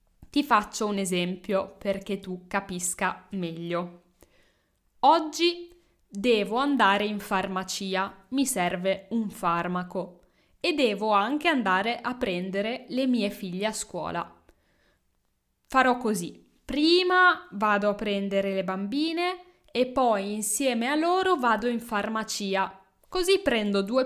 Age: 10-29